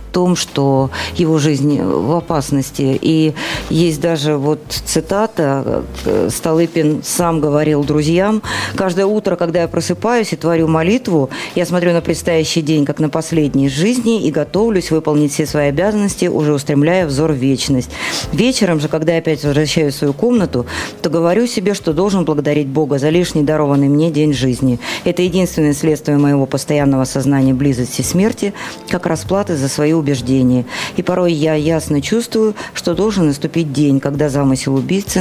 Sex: female